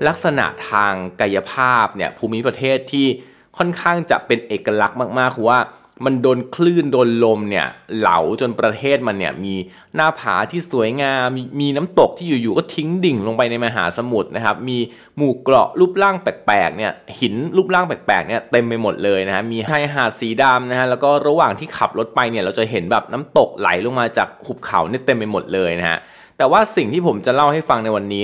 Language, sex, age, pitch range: Thai, male, 20-39, 105-140 Hz